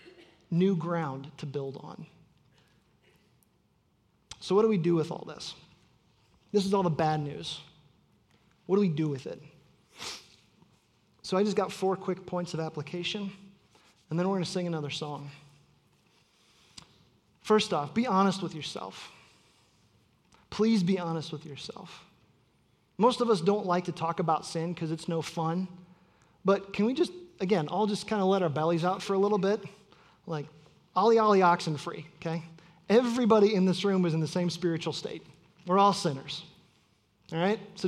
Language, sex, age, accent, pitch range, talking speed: English, male, 30-49, American, 160-200 Hz, 165 wpm